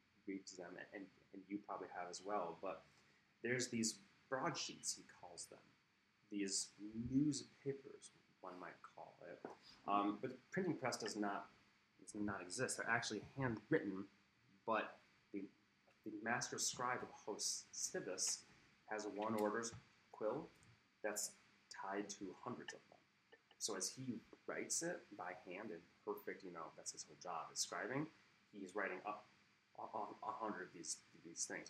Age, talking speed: 30-49, 150 wpm